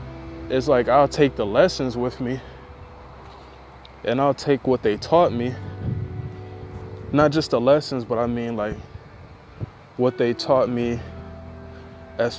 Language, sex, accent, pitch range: English, male, American, 105-140 Hz